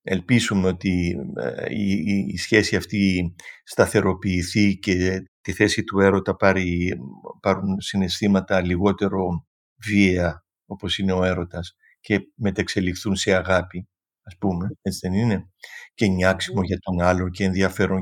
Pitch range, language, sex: 95-130 Hz, Greek, male